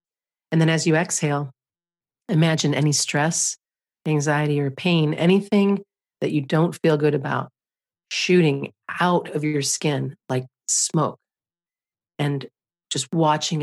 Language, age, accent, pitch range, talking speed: English, 40-59, American, 140-160 Hz, 125 wpm